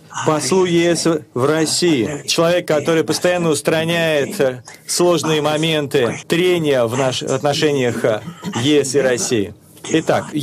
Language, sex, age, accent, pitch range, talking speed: Russian, male, 40-59, native, 135-170 Hz, 100 wpm